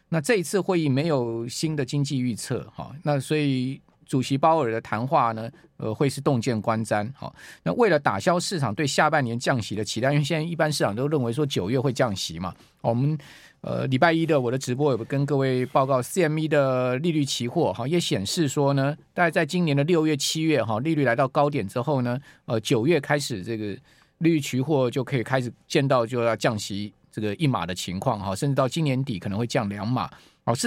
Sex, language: male, Chinese